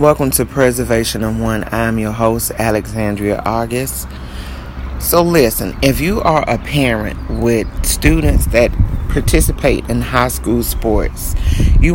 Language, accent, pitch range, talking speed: English, American, 100-125 Hz, 130 wpm